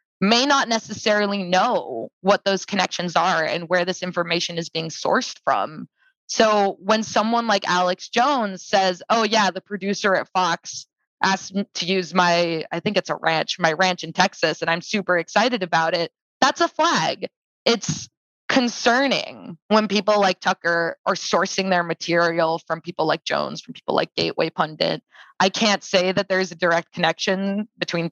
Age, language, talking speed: 20-39, English, 170 wpm